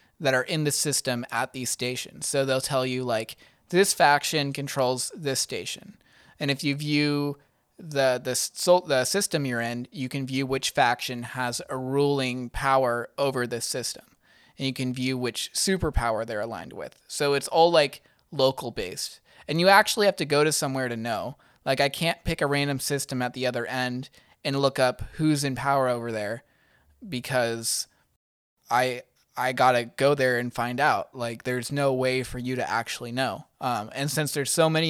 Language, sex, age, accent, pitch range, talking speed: English, male, 20-39, American, 125-145 Hz, 185 wpm